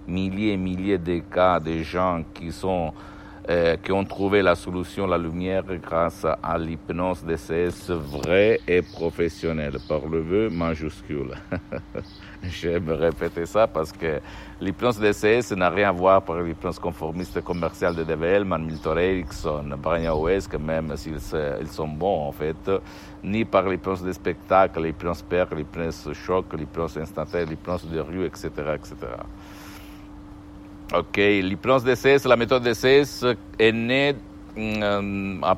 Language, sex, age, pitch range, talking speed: Italian, male, 60-79, 80-100 Hz, 140 wpm